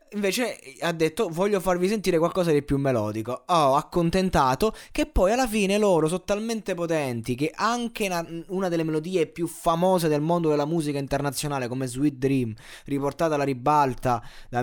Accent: native